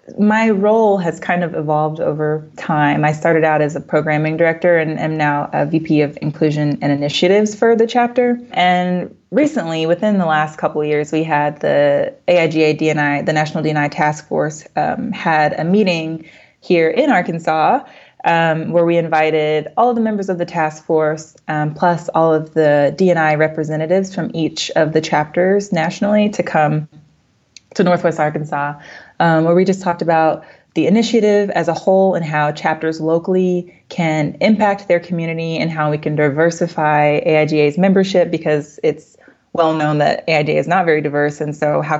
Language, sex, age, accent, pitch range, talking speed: English, female, 20-39, American, 150-175 Hz, 170 wpm